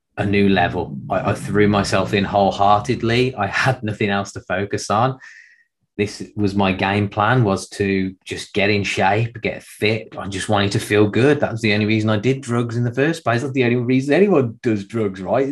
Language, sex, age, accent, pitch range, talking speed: English, male, 20-39, British, 95-115 Hz, 215 wpm